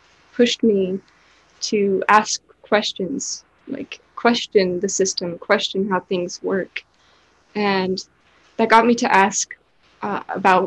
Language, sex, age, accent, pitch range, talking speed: English, female, 10-29, American, 195-235 Hz, 120 wpm